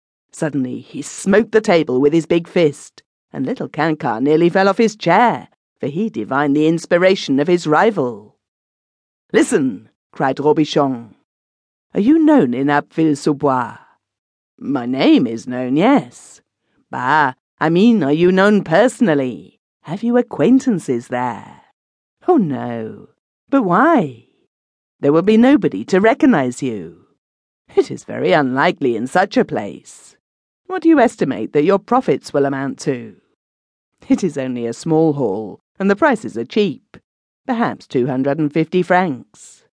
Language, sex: English, female